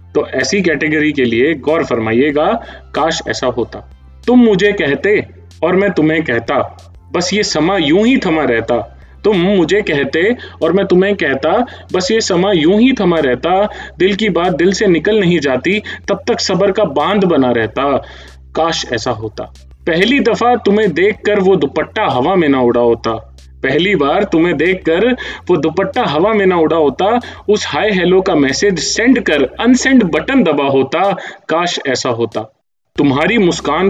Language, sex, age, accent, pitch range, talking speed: Hindi, male, 30-49, native, 125-200 Hz, 170 wpm